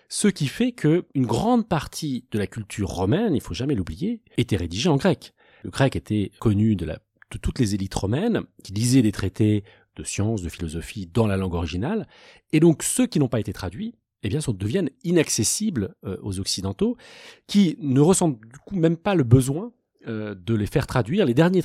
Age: 40-59